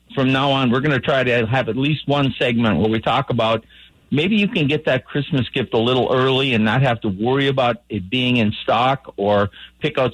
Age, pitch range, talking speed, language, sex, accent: 50-69, 115-145 Hz, 235 wpm, English, male, American